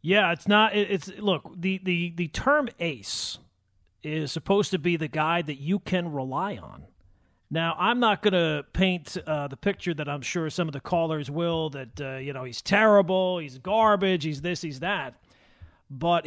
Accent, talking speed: American, 190 wpm